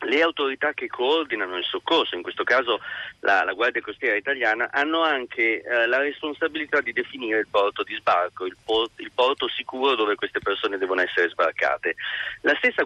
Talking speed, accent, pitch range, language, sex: 175 wpm, native, 125-185 Hz, Italian, male